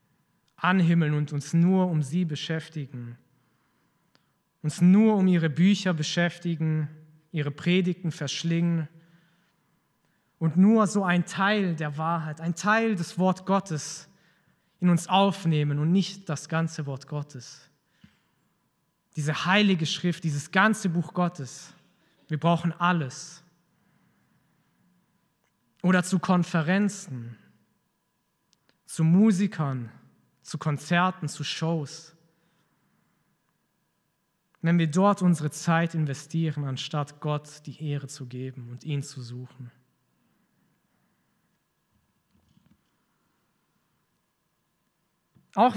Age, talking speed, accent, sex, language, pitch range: 20-39, 95 wpm, German, male, German, 145-180 Hz